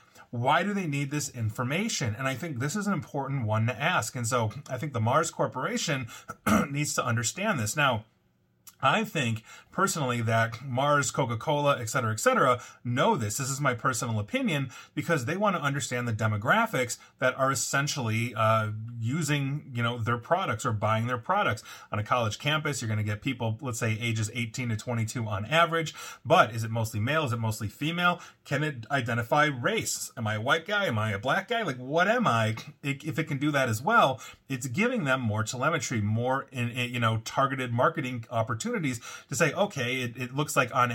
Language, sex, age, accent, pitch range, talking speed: English, male, 30-49, American, 115-145 Hz, 190 wpm